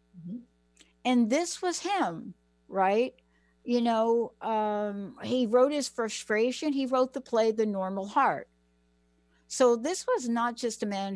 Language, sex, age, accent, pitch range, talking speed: English, female, 60-79, American, 180-250 Hz, 140 wpm